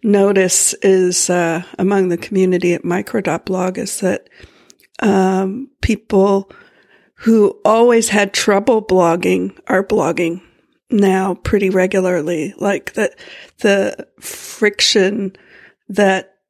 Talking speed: 100 wpm